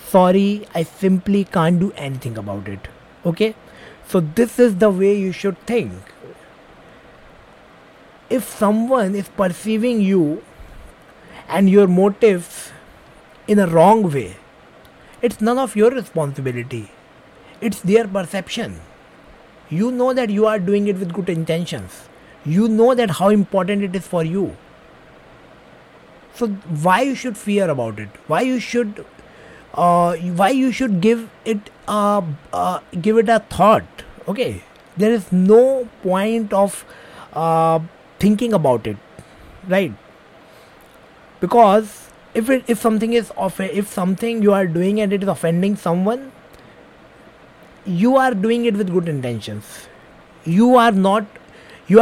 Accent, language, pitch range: Indian, English, 165-220 Hz